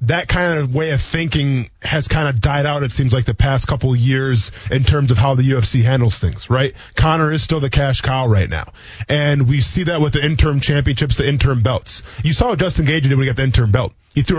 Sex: male